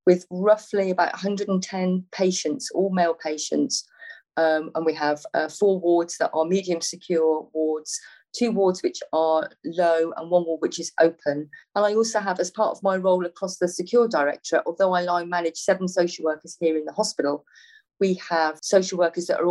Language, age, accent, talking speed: English, 40-59, British, 190 wpm